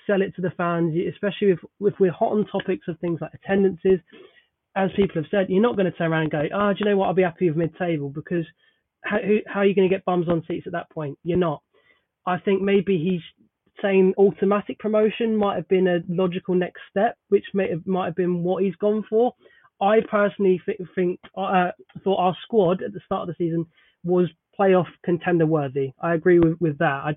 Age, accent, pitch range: 20-39, British, 165-195 Hz